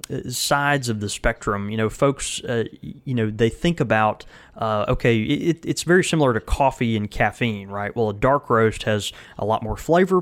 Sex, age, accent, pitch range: male, 20-39, American, 105-135 Hz